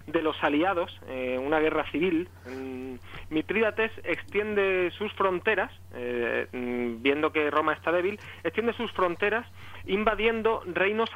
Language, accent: Spanish, Spanish